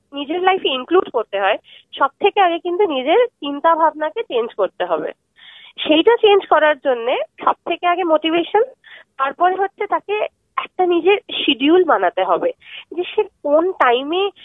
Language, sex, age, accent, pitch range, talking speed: Bengali, female, 30-49, native, 275-370 Hz, 135 wpm